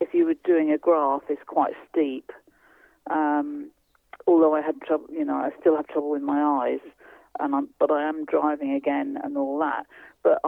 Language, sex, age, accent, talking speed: English, female, 40-59, British, 195 wpm